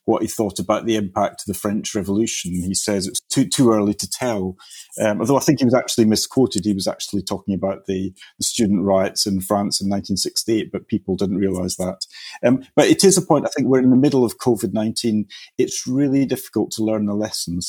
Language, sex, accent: English, male, British